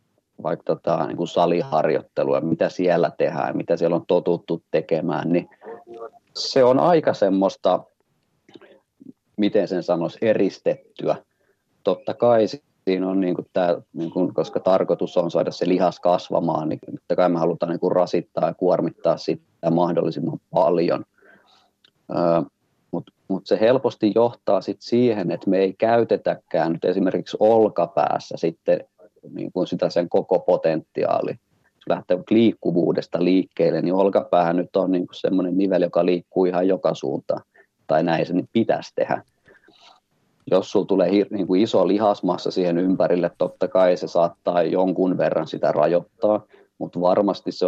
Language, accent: Finnish, native